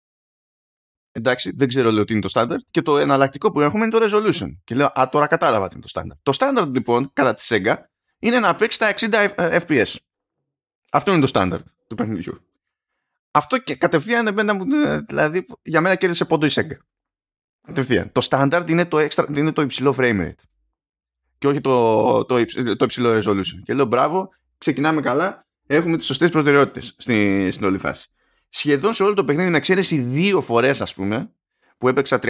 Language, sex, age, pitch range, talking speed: Greek, male, 20-39, 120-175 Hz, 170 wpm